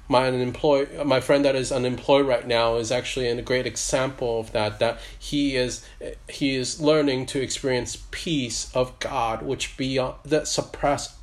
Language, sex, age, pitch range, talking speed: English, male, 30-49, 120-145 Hz, 160 wpm